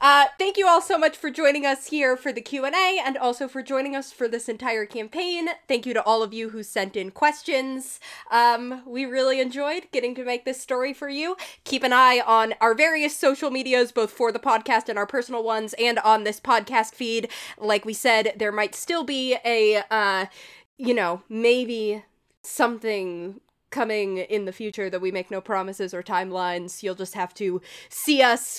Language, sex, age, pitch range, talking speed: English, female, 20-39, 190-255 Hz, 195 wpm